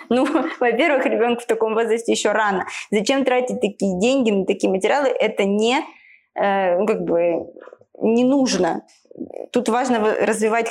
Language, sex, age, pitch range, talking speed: Russian, female, 20-39, 185-240 Hz, 140 wpm